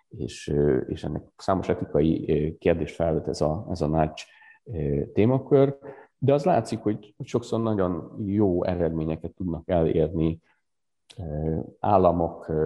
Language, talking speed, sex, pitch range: Hungarian, 110 wpm, male, 80-95 Hz